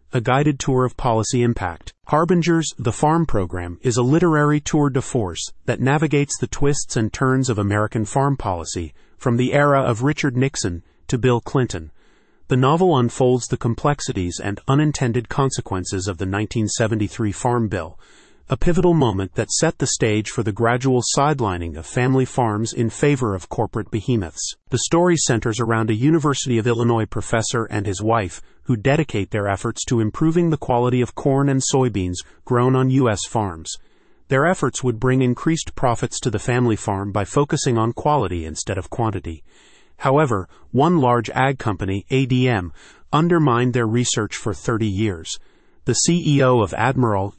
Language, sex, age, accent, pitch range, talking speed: English, male, 40-59, American, 105-135 Hz, 160 wpm